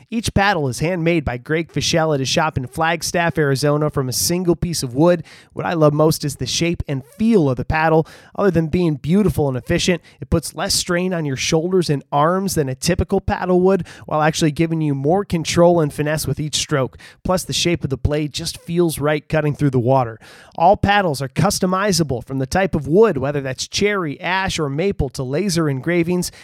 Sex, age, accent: male, 30-49, American